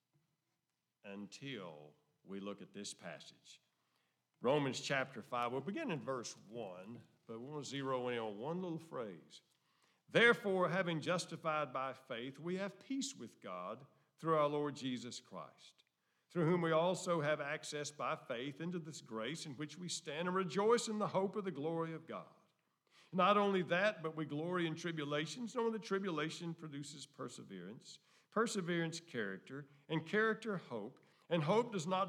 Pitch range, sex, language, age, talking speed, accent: 130-180 Hz, male, English, 50-69, 160 wpm, American